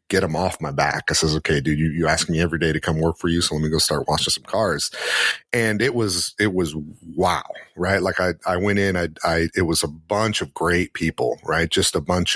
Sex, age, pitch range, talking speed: male, 40-59, 80-90 Hz, 255 wpm